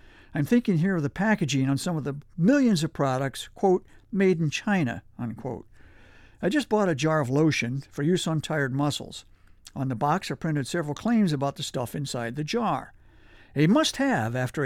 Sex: male